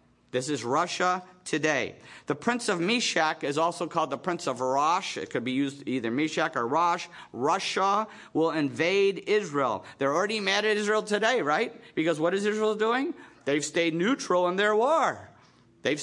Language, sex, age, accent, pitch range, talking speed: English, male, 50-69, American, 145-200 Hz, 170 wpm